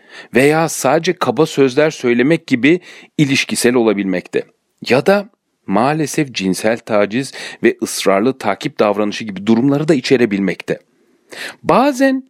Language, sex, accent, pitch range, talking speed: Turkish, male, native, 120-190 Hz, 105 wpm